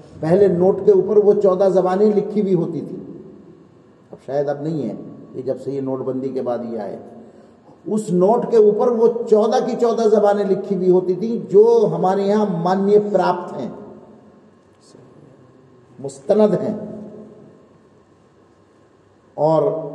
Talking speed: 145 wpm